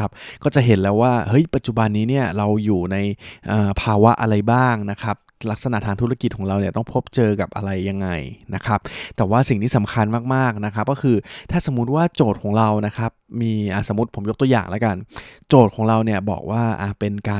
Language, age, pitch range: Thai, 20-39, 105-125 Hz